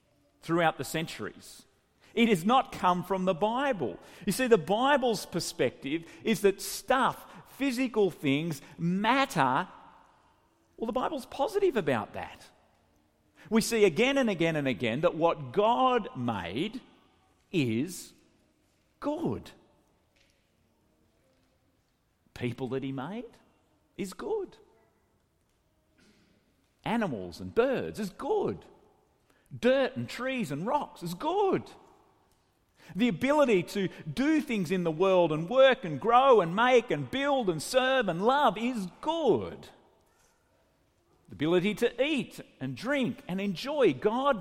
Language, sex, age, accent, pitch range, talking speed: English, male, 50-69, Australian, 165-255 Hz, 120 wpm